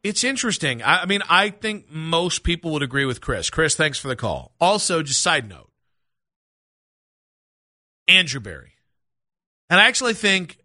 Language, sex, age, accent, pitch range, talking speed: English, male, 40-59, American, 135-175 Hz, 150 wpm